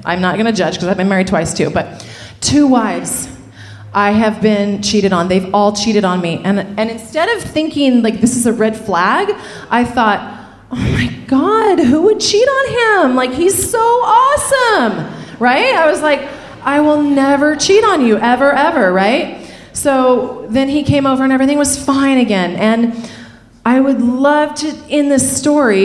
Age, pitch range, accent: 30-49, 180-255 Hz, American